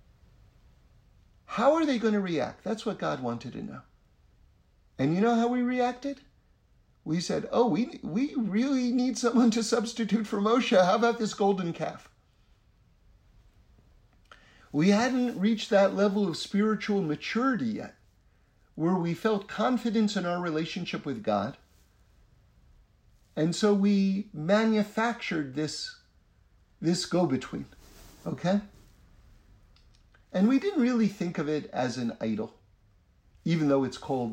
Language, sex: English, male